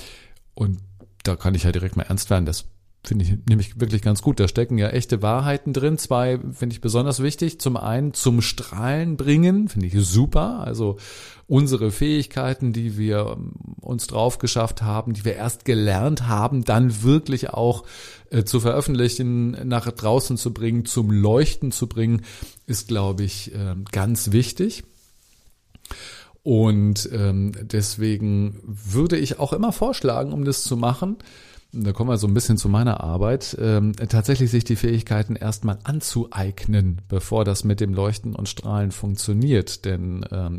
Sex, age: male, 40-59